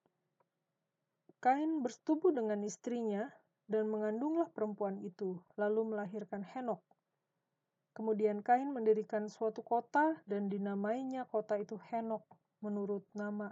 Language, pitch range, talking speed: Indonesian, 200-230 Hz, 100 wpm